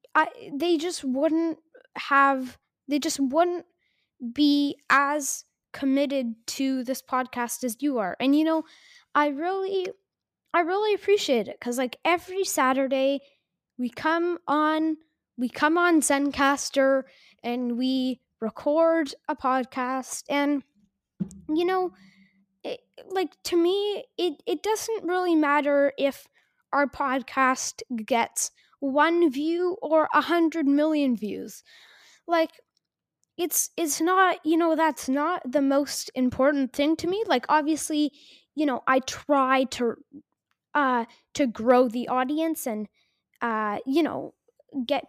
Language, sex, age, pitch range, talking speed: English, female, 10-29, 265-330 Hz, 125 wpm